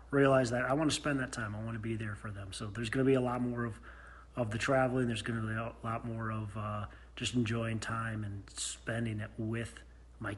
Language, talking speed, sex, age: English, 230 wpm, male, 30-49